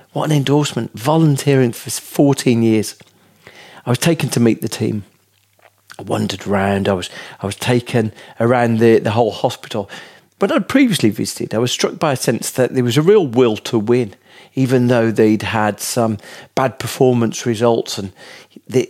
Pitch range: 110-145 Hz